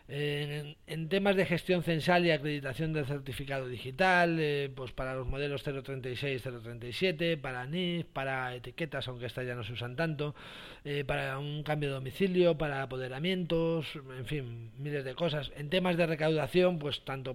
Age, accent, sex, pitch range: 40-59, Spanish, male, 135-165 Hz